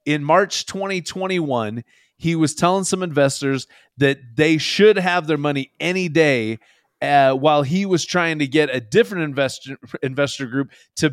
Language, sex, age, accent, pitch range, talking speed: English, male, 30-49, American, 135-165 Hz, 155 wpm